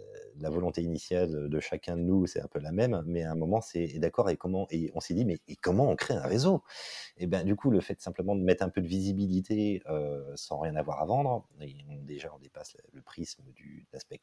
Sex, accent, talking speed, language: male, French, 240 wpm, French